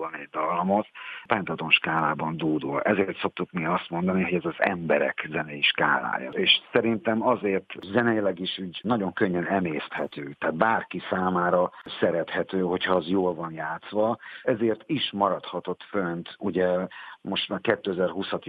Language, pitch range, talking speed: Hungarian, 90-105 Hz, 140 wpm